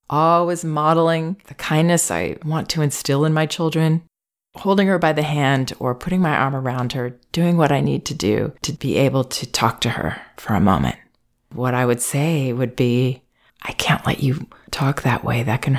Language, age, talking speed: English, 30-49, 200 wpm